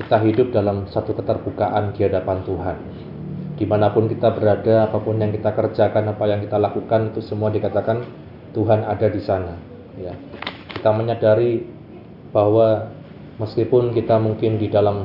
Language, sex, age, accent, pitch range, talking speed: Indonesian, male, 20-39, native, 105-120 Hz, 135 wpm